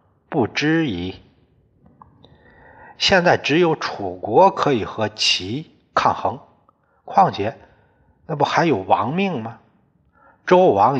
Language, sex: Chinese, male